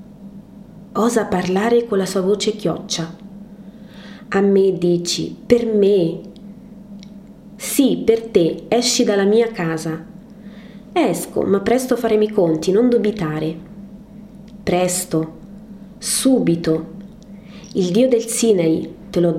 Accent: native